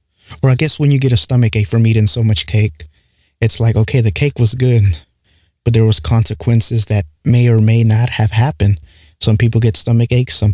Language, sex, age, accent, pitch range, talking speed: English, male, 20-39, American, 105-120 Hz, 215 wpm